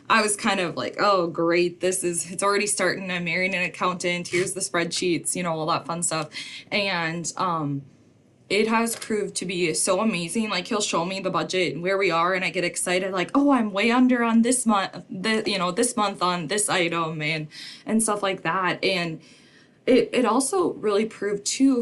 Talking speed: 210 wpm